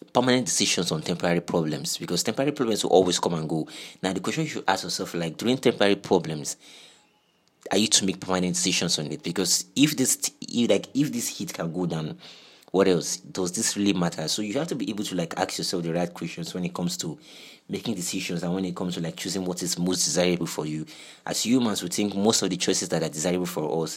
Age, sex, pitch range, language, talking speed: 30-49, male, 85-95 Hz, English, 235 wpm